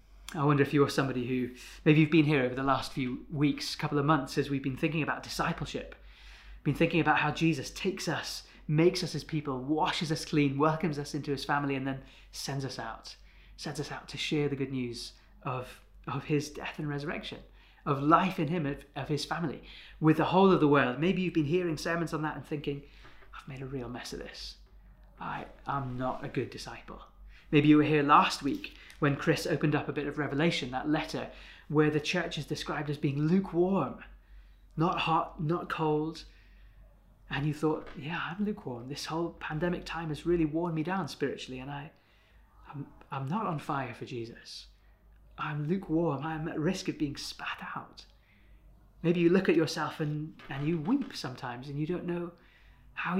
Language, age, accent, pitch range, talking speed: English, 30-49, British, 140-165 Hz, 200 wpm